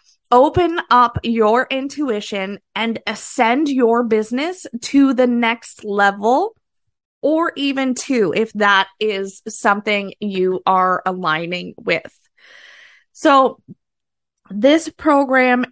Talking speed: 100 wpm